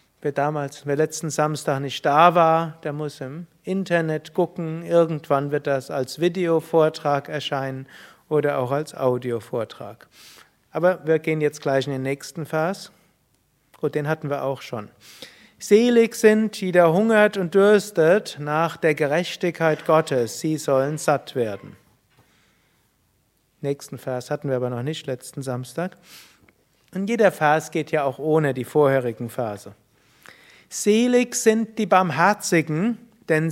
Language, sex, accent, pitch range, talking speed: German, male, German, 145-180 Hz, 135 wpm